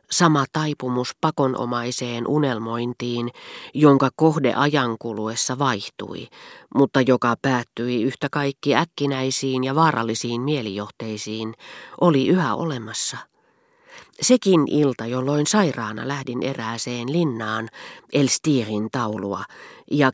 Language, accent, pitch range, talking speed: Finnish, native, 120-155 Hz, 95 wpm